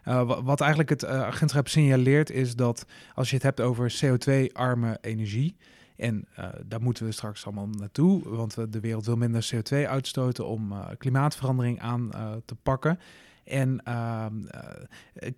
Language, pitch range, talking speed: Dutch, 115-135 Hz, 165 wpm